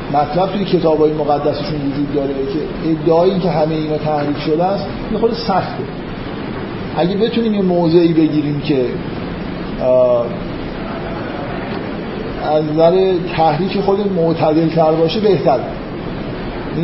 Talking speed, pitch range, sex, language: 120 wpm, 155-180 Hz, male, Persian